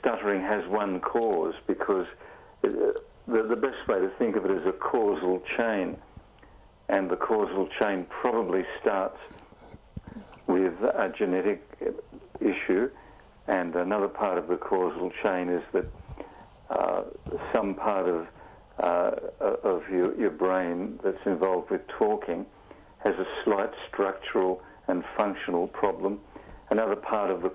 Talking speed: 135 wpm